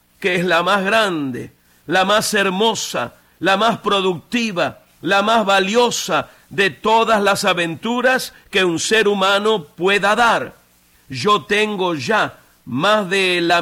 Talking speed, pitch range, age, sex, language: 130 wpm, 175-225 Hz, 50-69, male, Spanish